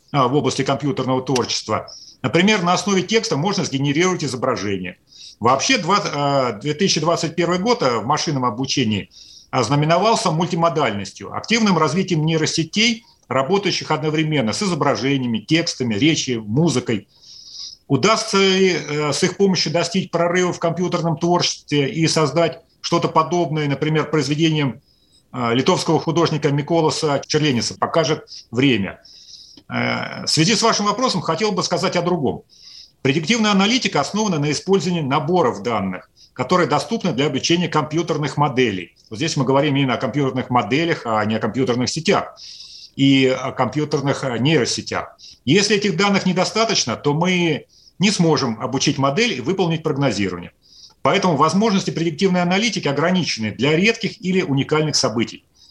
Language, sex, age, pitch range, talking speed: Russian, male, 40-59, 135-180 Hz, 120 wpm